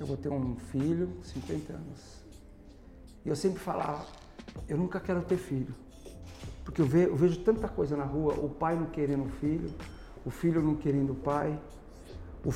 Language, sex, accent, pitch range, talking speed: Portuguese, male, Brazilian, 140-220 Hz, 170 wpm